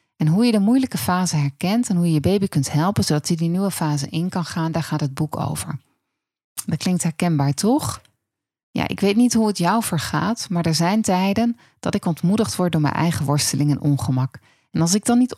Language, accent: Dutch, Dutch